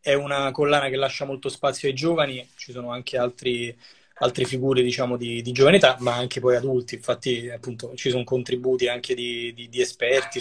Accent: native